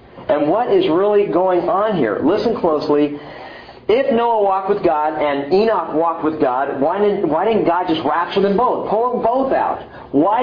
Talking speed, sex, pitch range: 185 wpm, male, 140-215 Hz